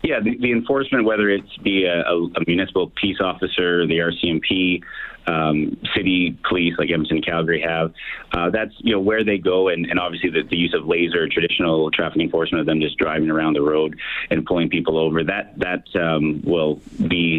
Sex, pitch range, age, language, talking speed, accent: male, 80-95 Hz, 30-49, English, 200 wpm, American